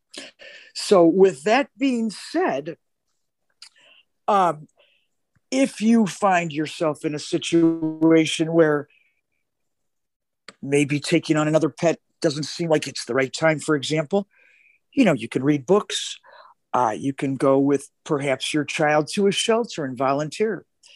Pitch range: 155-205 Hz